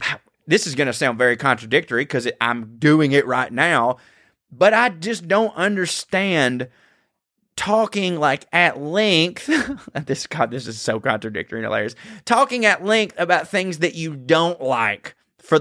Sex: male